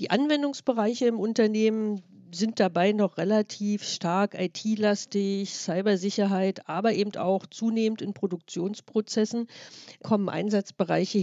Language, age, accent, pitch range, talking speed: German, 50-69, German, 185-215 Hz, 100 wpm